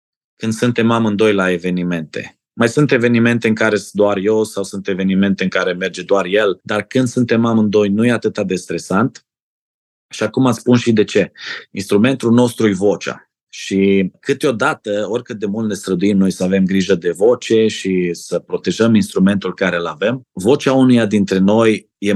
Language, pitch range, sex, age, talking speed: Romanian, 95-120 Hz, male, 30-49, 175 wpm